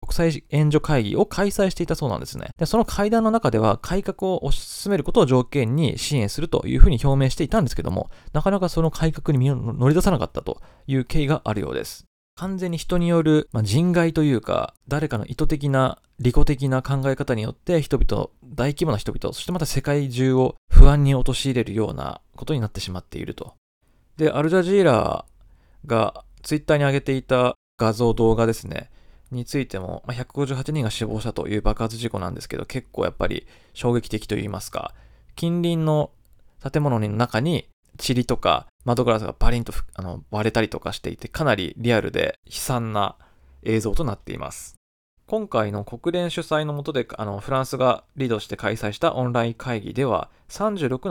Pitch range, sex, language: 110-155 Hz, male, Japanese